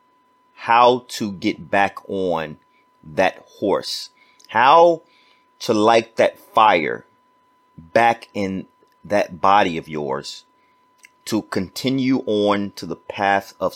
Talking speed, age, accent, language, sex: 110 wpm, 30-49, American, English, male